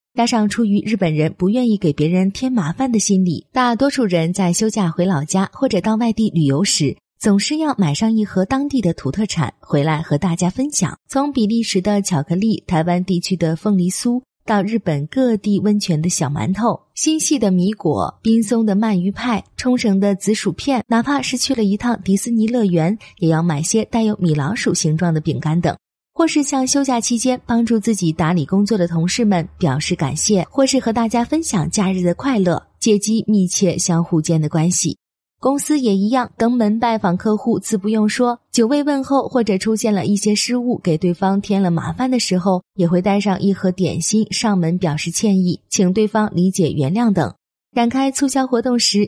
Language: Chinese